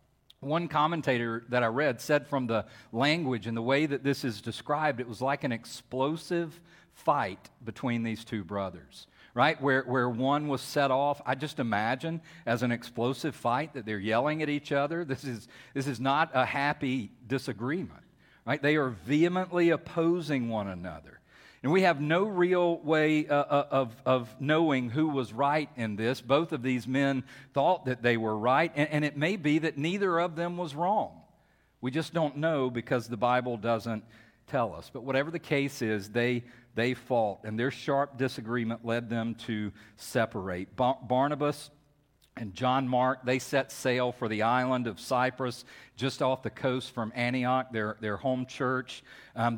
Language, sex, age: English, male, 40-59